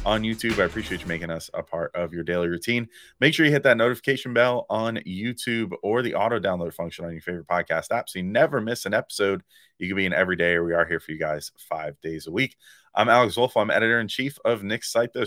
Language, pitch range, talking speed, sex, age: English, 100-125 Hz, 245 wpm, male, 30-49